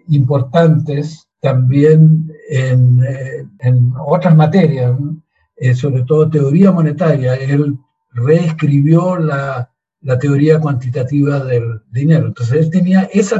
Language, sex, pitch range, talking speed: Spanish, male, 130-160 Hz, 110 wpm